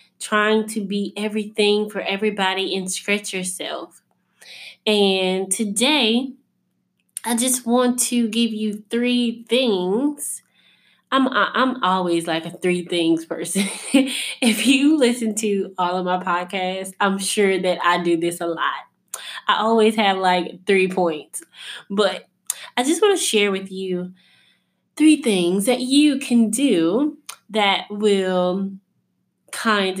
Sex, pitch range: female, 185-235 Hz